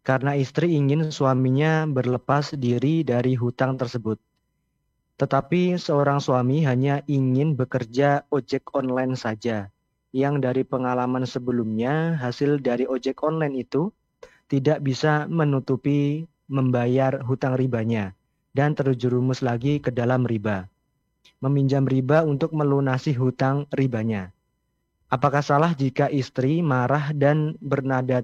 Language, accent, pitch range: Indonesian, native, 125-145 Hz